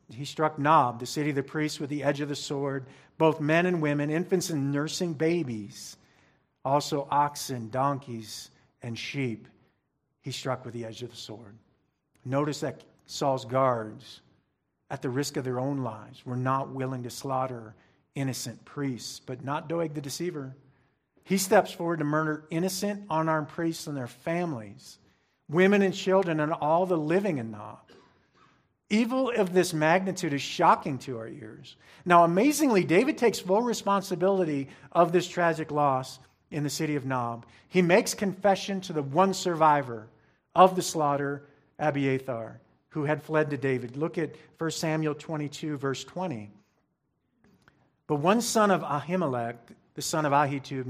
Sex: male